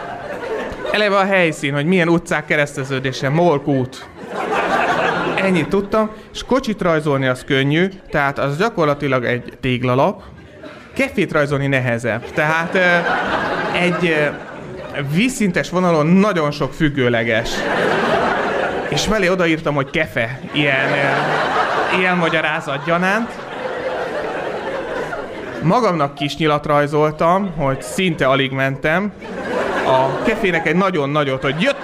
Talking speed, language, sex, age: 105 wpm, Hungarian, male, 30-49